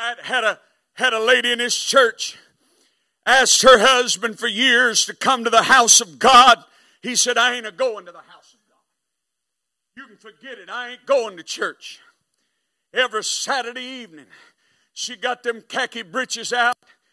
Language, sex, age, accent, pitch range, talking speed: English, male, 50-69, American, 230-265 Hz, 170 wpm